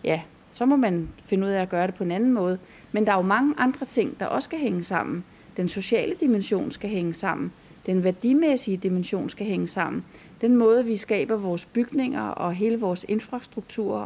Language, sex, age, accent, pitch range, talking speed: Danish, female, 30-49, native, 190-230 Hz, 205 wpm